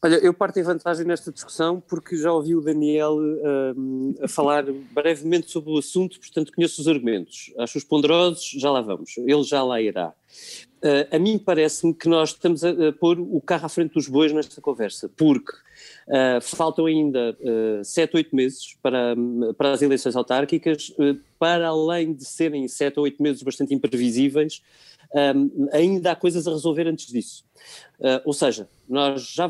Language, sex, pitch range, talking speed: Portuguese, male, 135-170 Hz, 175 wpm